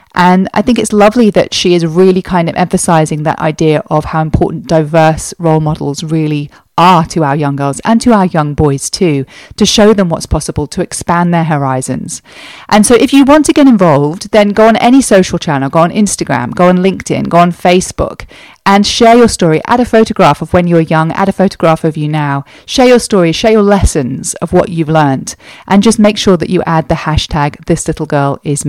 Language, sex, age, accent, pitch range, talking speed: English, female, 30-49, British, 155-190 Hz, 220 wpm